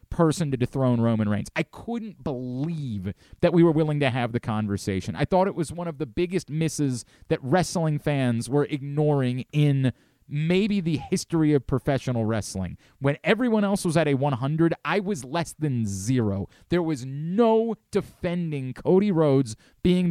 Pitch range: 125-180 Hz